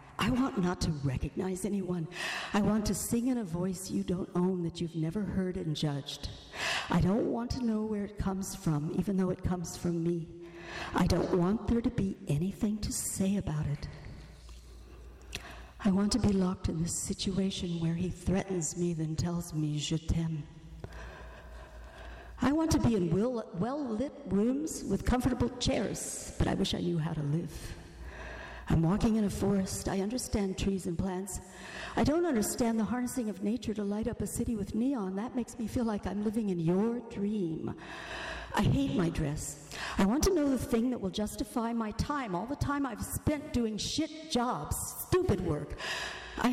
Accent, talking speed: American, 185 wpm